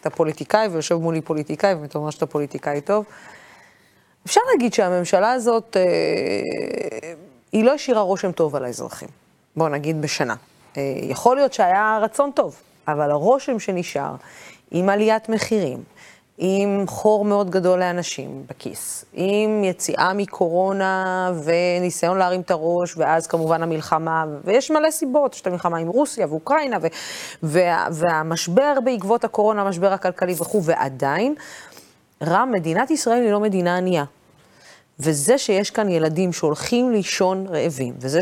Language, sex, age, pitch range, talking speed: Hebrew, female, 30-49, 160-215 Hz, 135 wpm